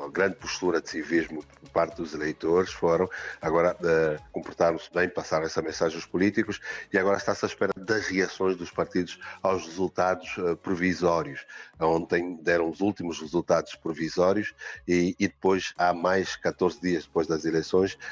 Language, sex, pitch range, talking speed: Portuguese, male, 80-95 Hz, 160 wpm